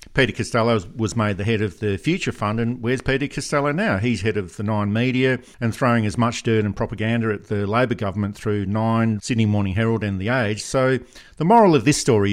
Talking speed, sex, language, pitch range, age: 225 wpm, male, English, 105-120 Hz, 50-69